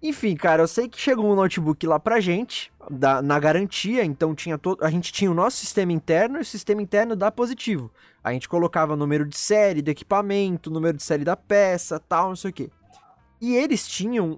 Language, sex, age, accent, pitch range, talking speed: Portuguese, male, 20-39, Brazilian, 155-215 Hz, 215 wpm